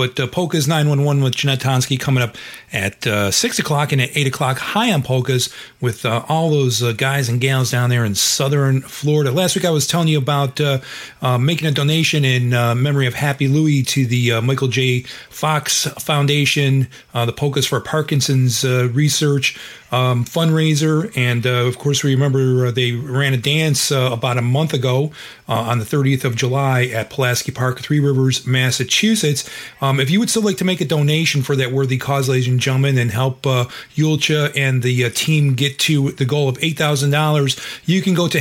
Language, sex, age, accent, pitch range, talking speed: English, male, 40-59, American, 125-145 Hz, 200 wpm